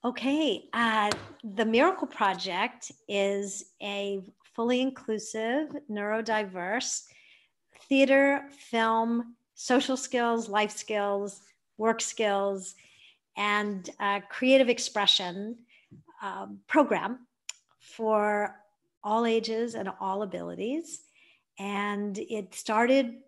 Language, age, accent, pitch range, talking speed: English, 50-69, American, 195-235 Hz, 85 wpm